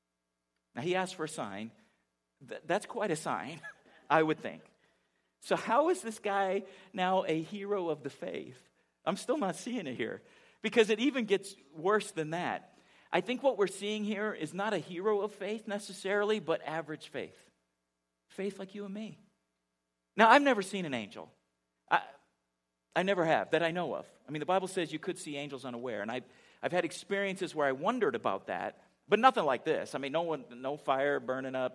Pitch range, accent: 115-185 Hz, American